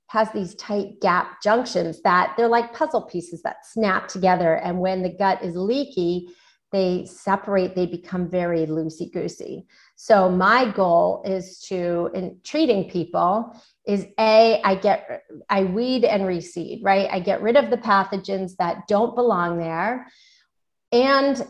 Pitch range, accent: 185-240 Hz, American